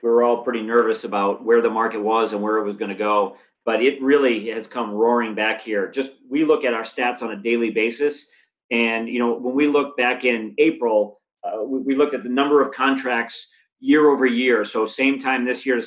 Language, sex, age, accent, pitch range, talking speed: English, male, 40-59, American, 115-135 Hz, 235 wpm